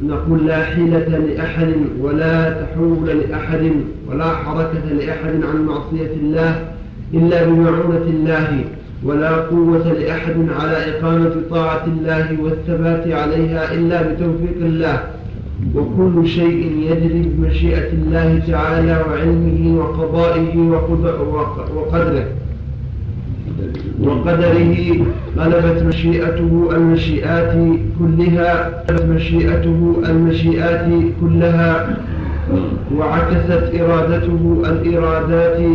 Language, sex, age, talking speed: Arabic, male, 40-59, 80 wpm